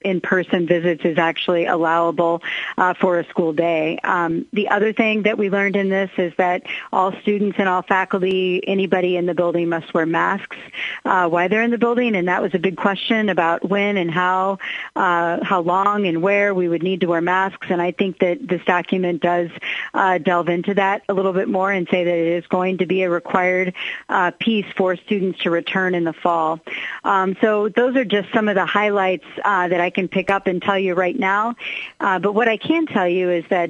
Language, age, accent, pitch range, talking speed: English, 40-59, American, 175-200 Hz, 220 wpm